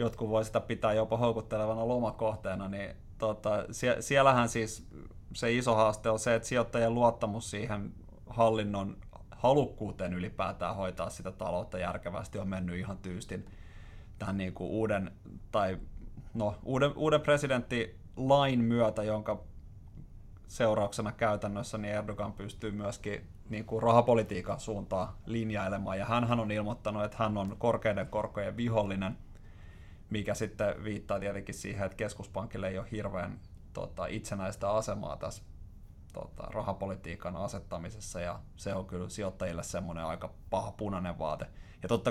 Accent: native